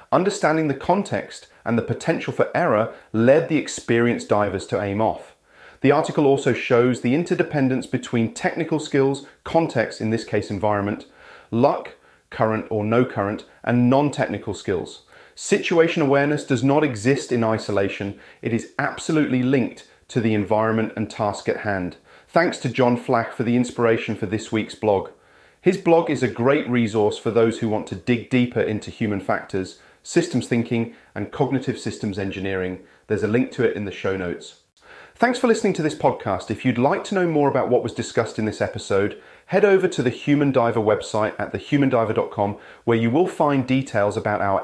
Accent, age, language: British, 30-49, English